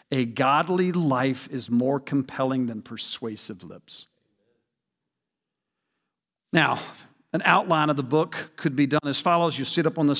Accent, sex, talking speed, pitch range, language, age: American, male, 155 wpm, 135-170 Hz, English, 50-69